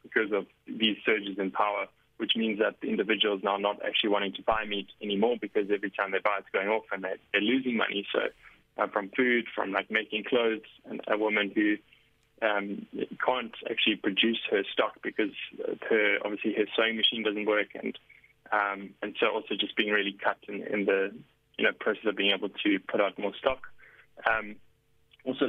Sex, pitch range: male, 100-115 Hz